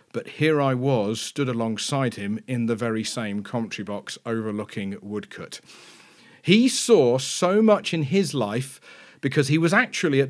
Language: English